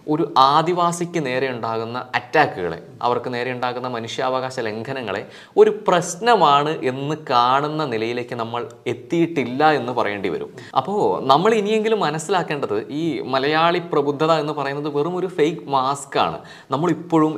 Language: Malayalam